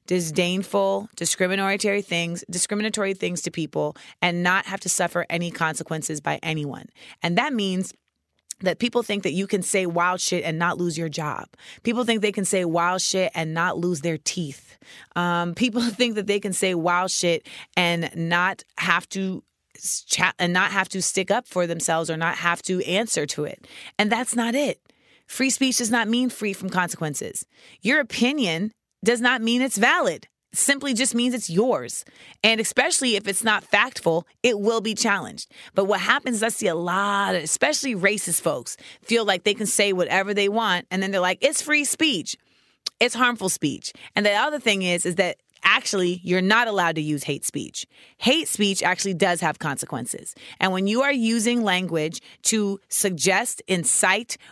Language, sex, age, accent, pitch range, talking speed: English, female, 20-39, American, 175-225 Hz, 185 wpm